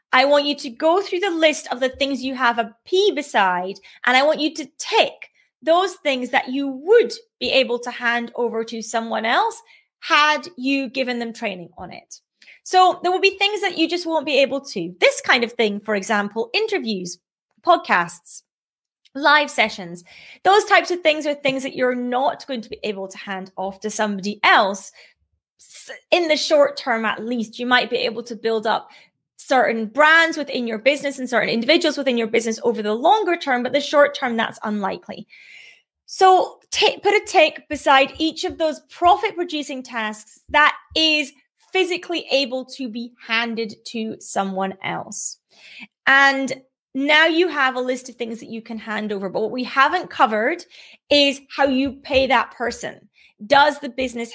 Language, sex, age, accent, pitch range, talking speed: English, female, 30-49, British, 225-310 Hz, 180 wpm